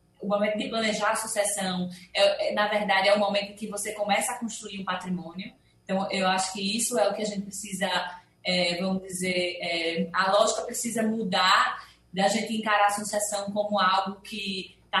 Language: Portuguese